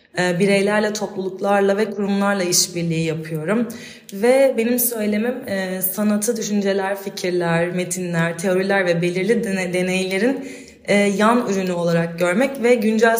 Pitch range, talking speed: 180-215 Hz, 105 wpm